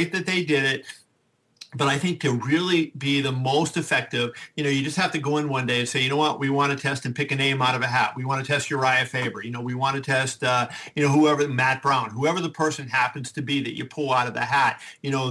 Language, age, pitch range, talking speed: English, 50-69, 135-165 Hz, 285 wpm